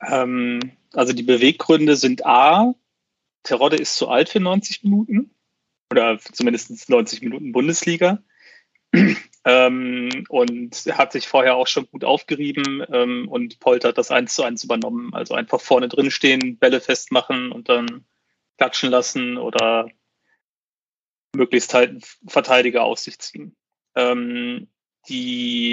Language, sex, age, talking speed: German, male, 30-49, 125 wpm